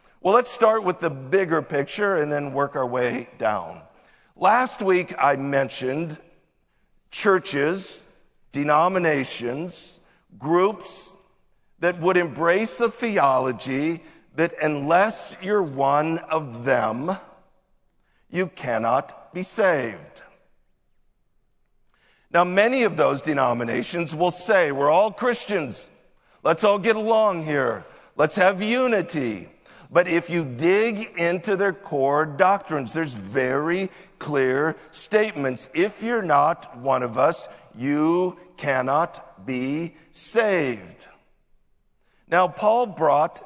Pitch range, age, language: 145-195 Hz, 50-69, English